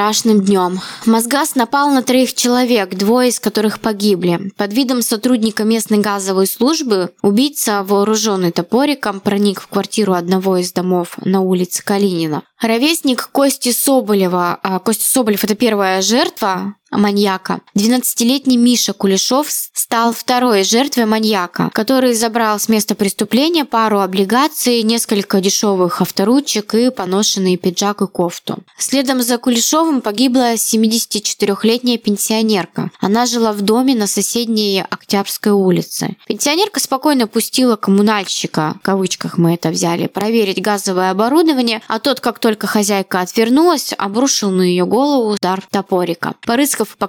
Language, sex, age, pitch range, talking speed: Russian, female, 20-39, 200-245 Hz, 125 wpm